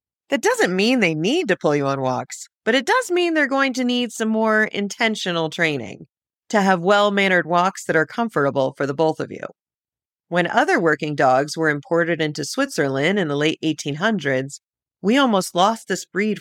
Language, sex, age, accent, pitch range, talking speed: English, female, 40-59, American, 160-230 Hz, 185 wpm